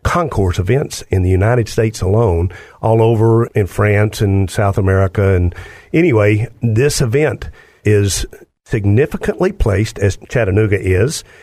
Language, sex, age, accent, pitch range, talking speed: English, male, 50-69, American, 95-125 Hz, 125 wpm